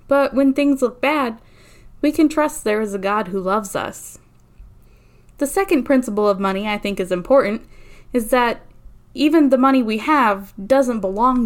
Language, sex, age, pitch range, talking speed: English, female, 10-29, 215-275 Hz, 175 wpm